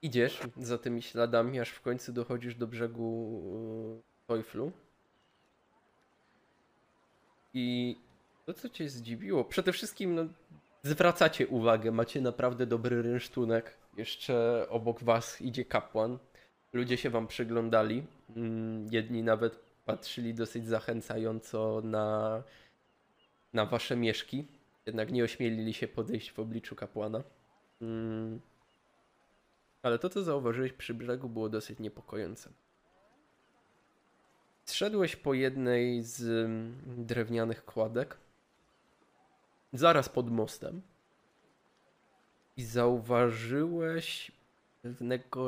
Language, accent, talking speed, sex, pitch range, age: Polish, native, 100 wpm, male, 115-130 Hz, 20-39